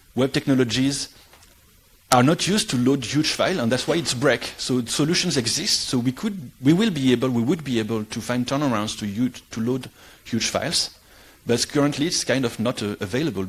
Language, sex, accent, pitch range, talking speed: English, male, French, 100-130 Hz, 195 wpm